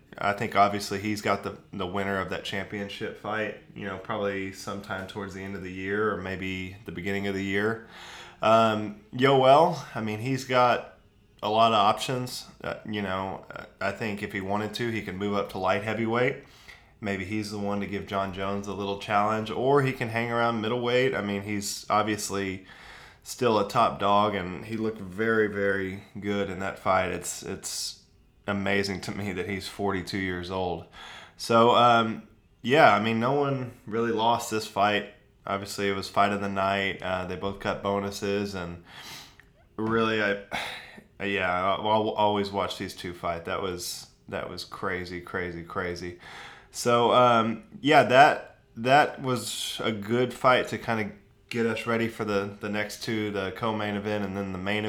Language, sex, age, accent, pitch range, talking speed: English, male, 20-39, American, 100-110 Hz, 180 wpm